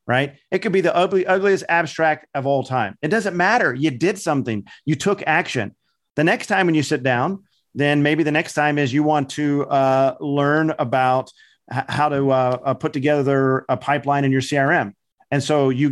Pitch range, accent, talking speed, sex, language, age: 130-150 Hz, American, 205 wpm, male, English, 40-59